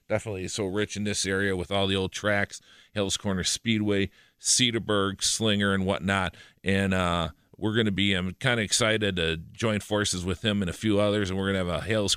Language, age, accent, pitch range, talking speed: English, 40-59, American, 85-105 Hz, 210 wpm